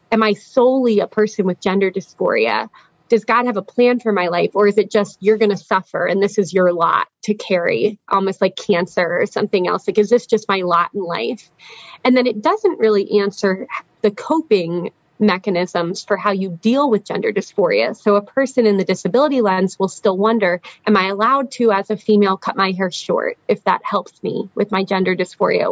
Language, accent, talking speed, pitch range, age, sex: English, American, 210 wpm, 185-225 Hz, 20-39, female